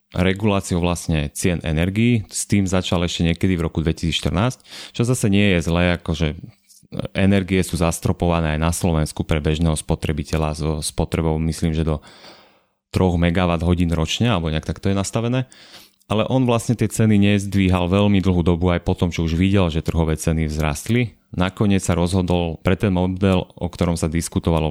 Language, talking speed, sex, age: Slovak, 170 wpm, male, 30-49